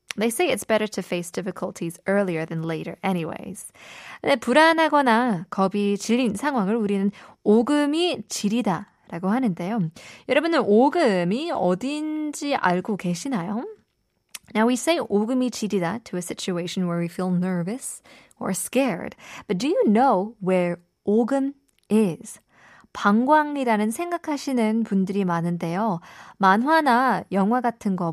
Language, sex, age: Korean, female, 20-39